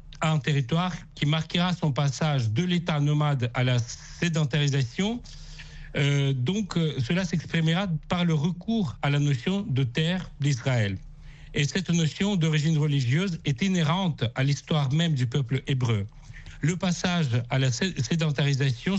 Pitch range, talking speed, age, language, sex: 135-170 Hz, 140 wpm, 60-79, French, male